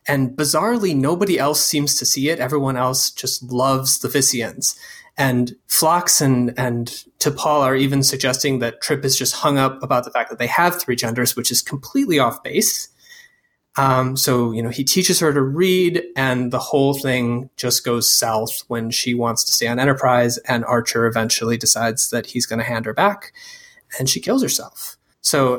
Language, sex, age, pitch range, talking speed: English, male, 20-39, 125-155 Hz, 190 wpm